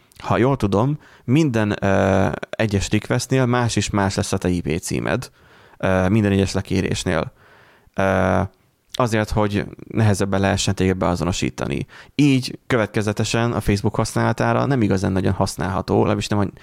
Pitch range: 95-110 Hz